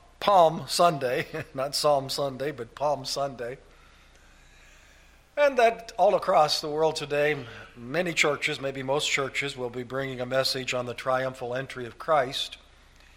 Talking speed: 140 wpm